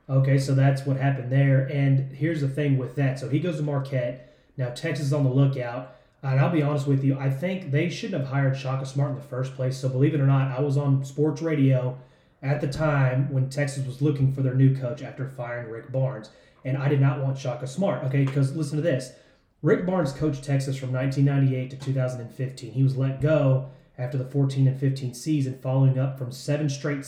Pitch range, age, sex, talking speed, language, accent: 135-150 Hz, 30-49, male, 225 wpm, English, American